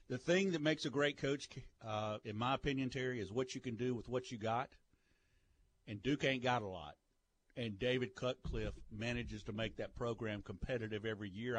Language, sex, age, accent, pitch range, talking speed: English, male, 50-69, American, 100-125 Hz, 195 wpm